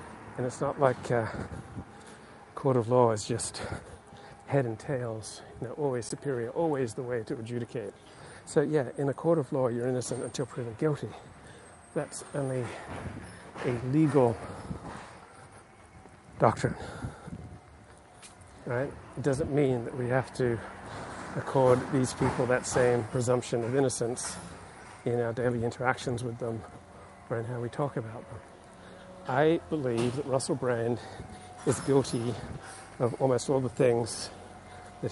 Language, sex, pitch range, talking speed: English, male, 115-135 Hz, 140 wpm